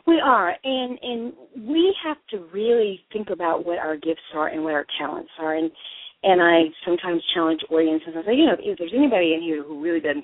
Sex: female